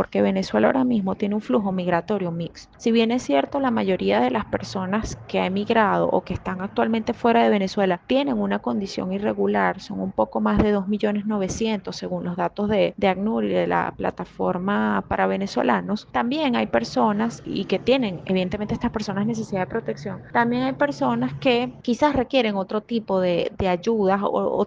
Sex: female